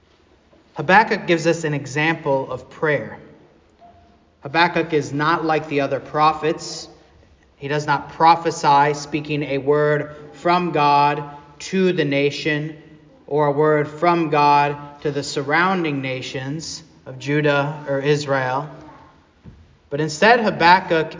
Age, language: 30-49, English